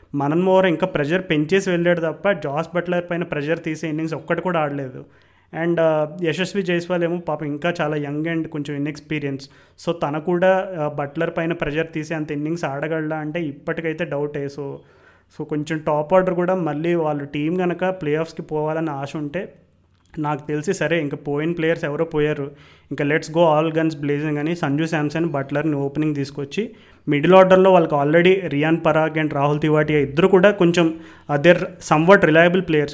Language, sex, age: Telugu, male, 30-49